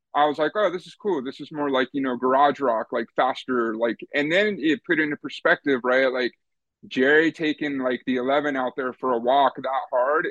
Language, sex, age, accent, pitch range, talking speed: English, male, 30-49, American, 125-145 Hz, 220 wpm